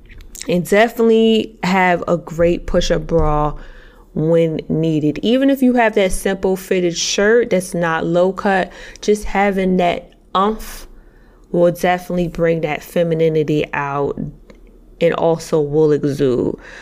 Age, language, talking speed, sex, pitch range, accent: 20-39, English, 130 wpm, female, 165-205 Hz, American